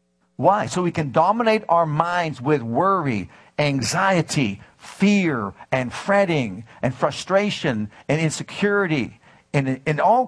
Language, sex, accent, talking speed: English, male, American, 115 wpm